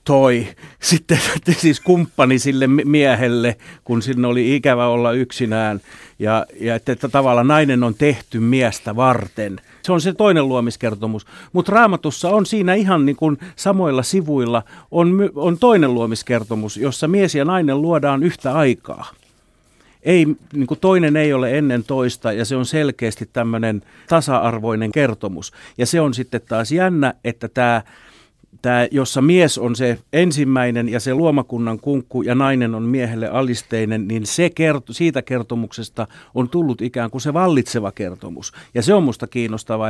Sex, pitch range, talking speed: male, 115-145 Hz, 155 wpm